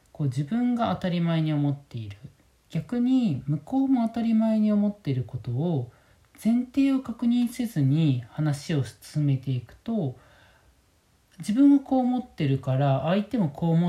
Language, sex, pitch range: Japanese, male, 120-205 Hz